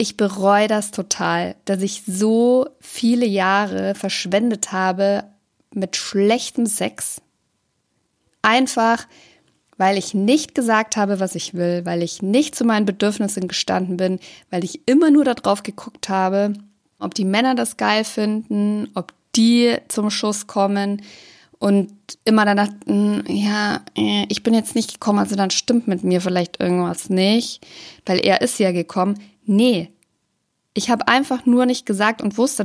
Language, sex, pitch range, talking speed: German, female, 190-230 Hz, 150 wpm